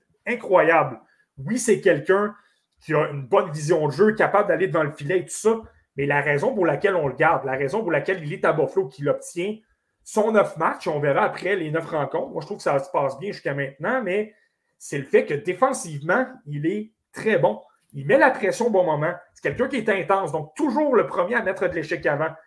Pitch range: 155-225 Hz